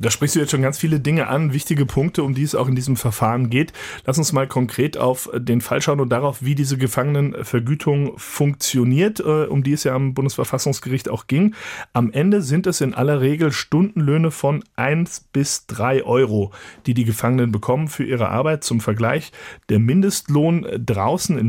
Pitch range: 115-145 Hz